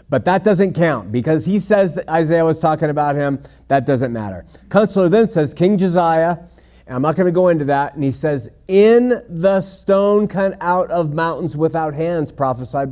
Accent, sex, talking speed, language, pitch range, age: American, male, 195 wpm, English, 135-175 Hz, 50-69